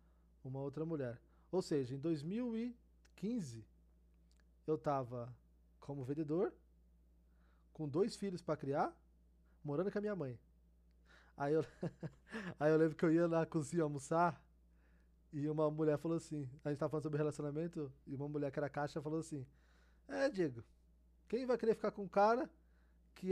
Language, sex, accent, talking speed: Portuguese, male, Brazilian, 155 wpm